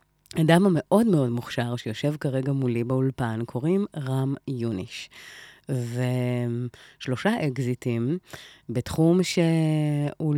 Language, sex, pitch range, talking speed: Hebrew, female, 125-165 Hz, 85 wpm